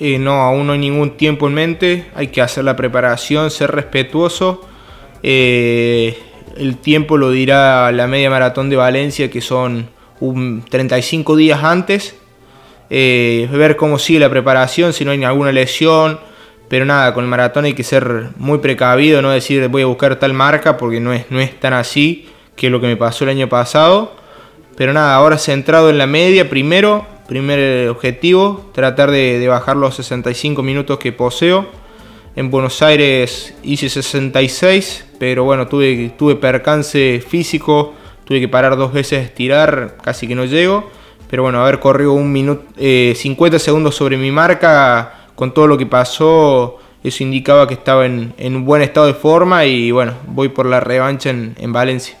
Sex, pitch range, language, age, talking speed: male, 125-150 Hz, Spanish, 20-39, 170 wpm